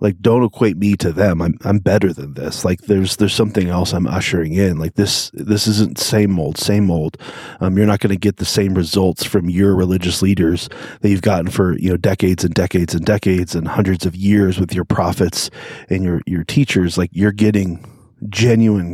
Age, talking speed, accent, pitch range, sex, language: 30-49, 210 wpm, American, 95-105 Hz, male, English